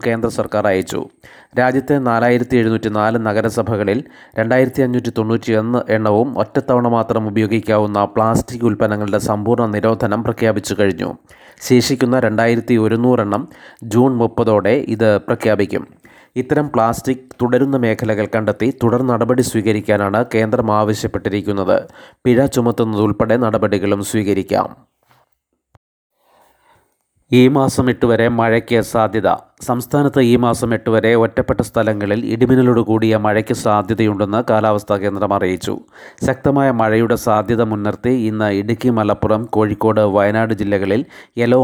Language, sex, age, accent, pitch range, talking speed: Malayalam, male, 30-49, native, 105-120 Hz, 100 wpm